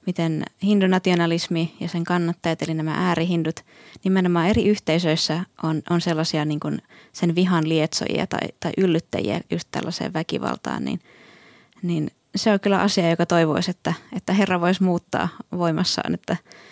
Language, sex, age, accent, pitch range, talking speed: Finnish, female, 20-39, native, 160-195 Hz, 145 wpm